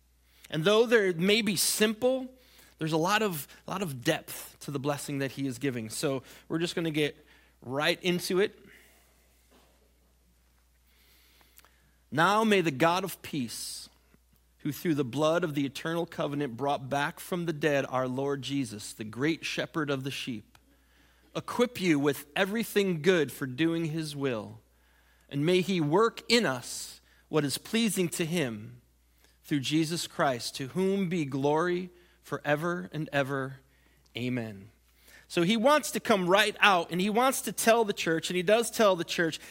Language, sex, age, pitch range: English, male, 30-49, 135-210 Hz